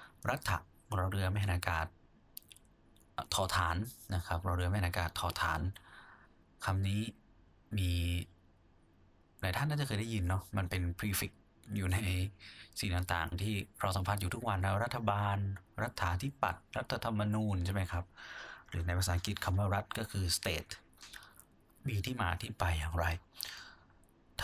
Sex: male